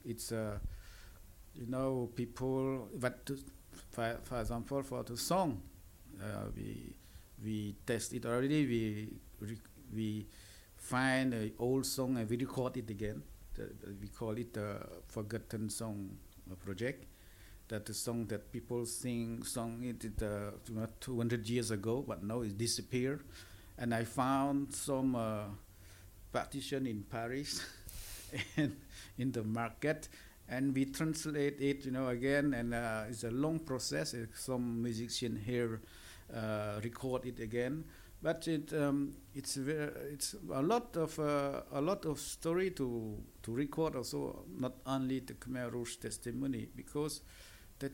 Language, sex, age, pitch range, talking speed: English, male, 50-69, 105-135 Hz, 145 wpm